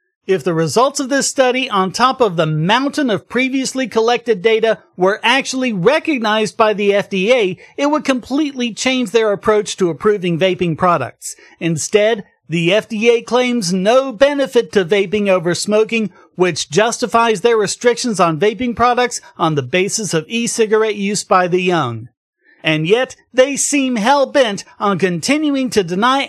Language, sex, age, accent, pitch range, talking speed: English, male, 40-59, American, 190-260 Hz, 150 wpm